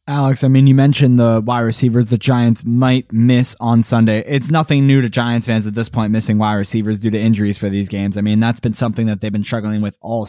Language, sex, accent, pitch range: English, male, American, 110-125 Hz